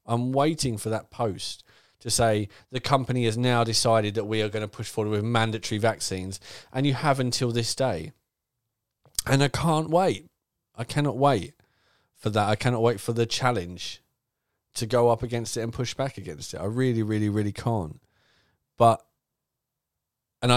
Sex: male